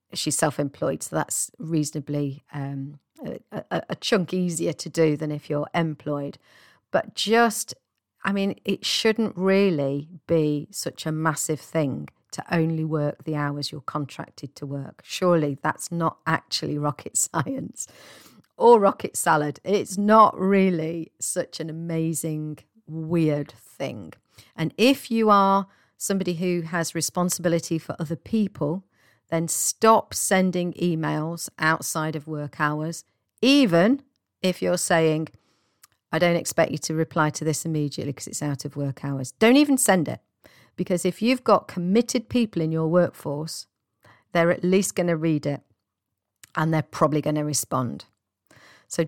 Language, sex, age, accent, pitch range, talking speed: English, female, 40-59, British, 145-180 Hz, 145 wpm